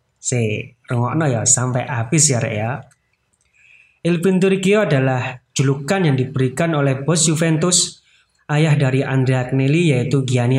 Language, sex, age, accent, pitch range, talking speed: Indonesian, male, 30-49, native, 125-155 Hz, 115 wpm